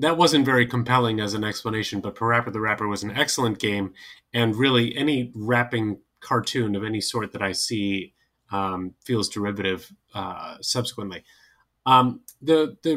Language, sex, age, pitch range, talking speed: English, male, 30-49, 105-145 Hz, 160 wpm